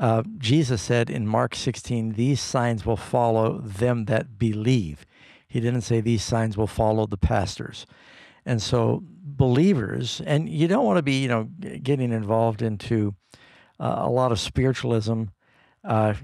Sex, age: male, 60-79